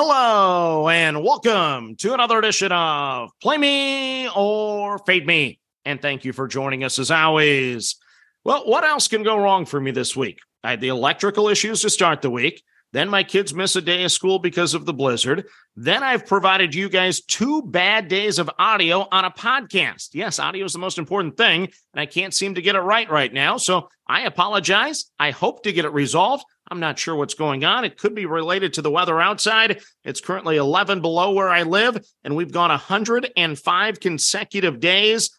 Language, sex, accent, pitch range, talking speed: English, male, American, 160-205 Hz, 200 wpm